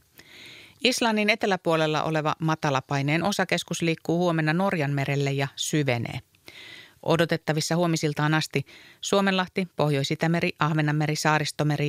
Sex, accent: female, native